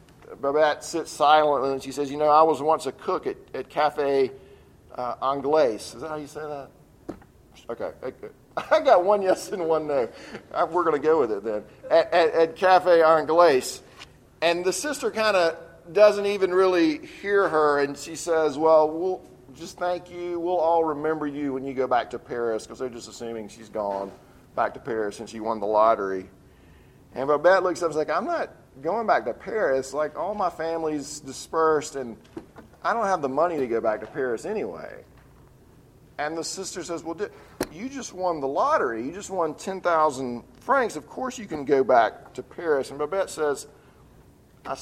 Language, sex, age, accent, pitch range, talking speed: English, male, 40-59, American, 140-180 Hz, 190 wpm